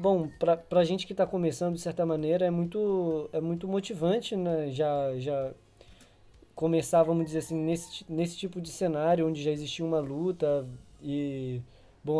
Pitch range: 150-180 Hz